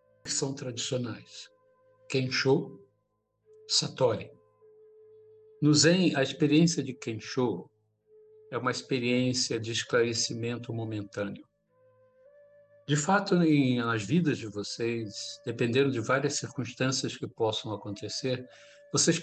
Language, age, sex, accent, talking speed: Portuguese, 60-79, male, Brazilian, 100 wpm